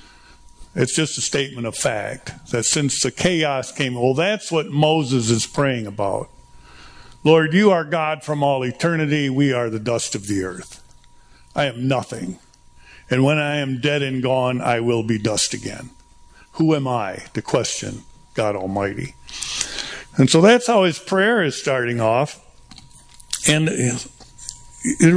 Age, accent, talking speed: 60-79, American, 155 wpm